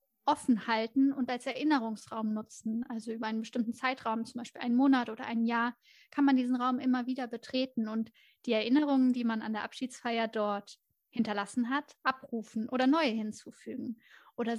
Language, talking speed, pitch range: German, 170 wpm, 225-260 Hz